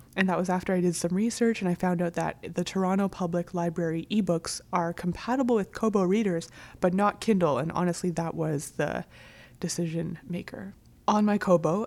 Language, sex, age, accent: Russian, female, 20-39, American